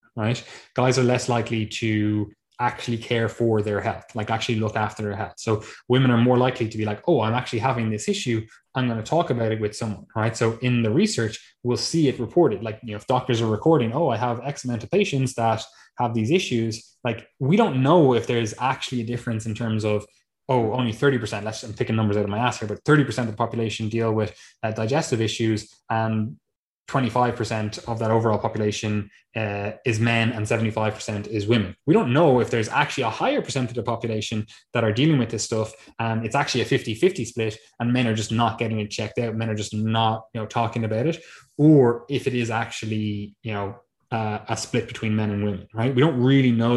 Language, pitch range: English, 110-120 Hz